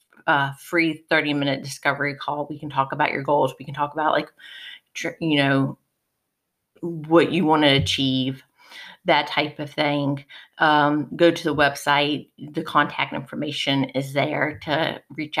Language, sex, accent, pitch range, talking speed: English, female, American, 145-195 Hz, 165 wpm